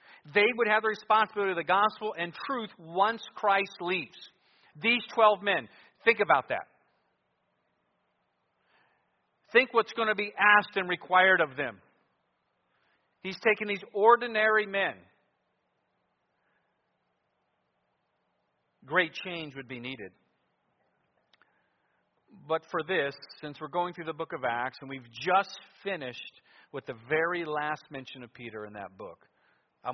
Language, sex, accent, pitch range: English, male, American, 135-195 Hz